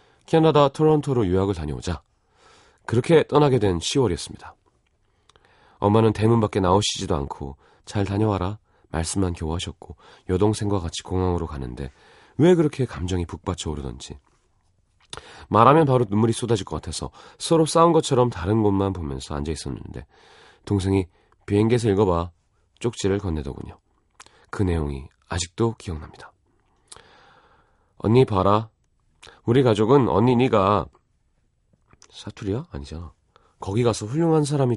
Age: 30-49